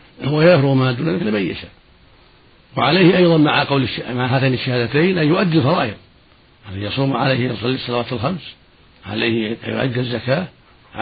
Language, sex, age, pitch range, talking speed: Arabic, male, 70-89, 115-155 Hz, 150 wpm